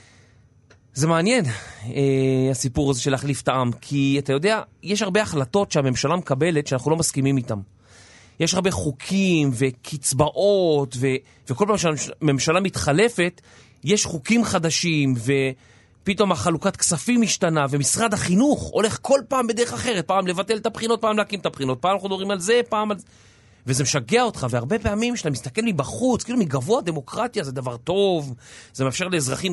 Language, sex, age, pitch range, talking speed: Hebrew, male, 30-49, 135-200 Hz, 155 wpm